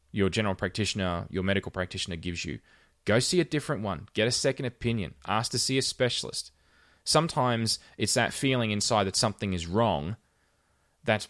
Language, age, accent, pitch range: English, 20-39, Australian, 90-110 Hz